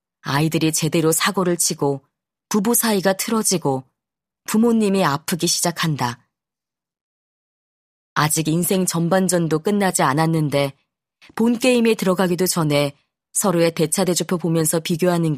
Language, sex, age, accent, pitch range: Korean, female, 30-49, native, 145-190 Hz